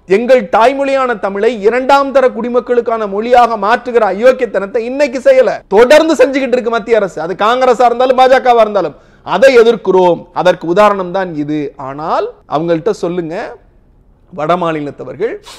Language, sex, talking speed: Tamil, male, 65 wpm